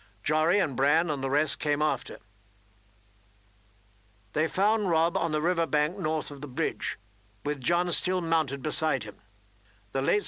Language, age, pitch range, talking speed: English, 60-79, 110-165 Hz, 160 wpm